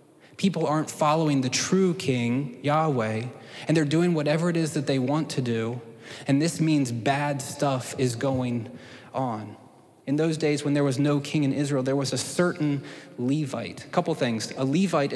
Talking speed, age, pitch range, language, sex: 180 wpm, 20-39, 130-155 Hz, English, male